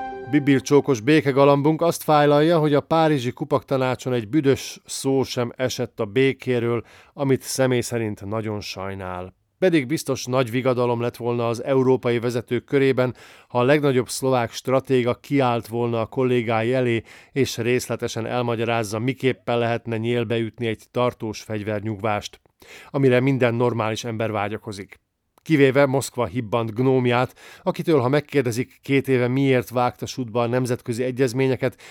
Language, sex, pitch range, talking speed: Hungarian, male, 115-135 Hz, 130 wpm